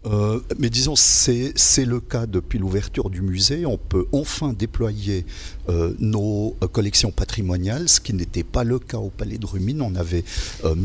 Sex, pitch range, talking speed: male, 95-115 Hz, 175 wpm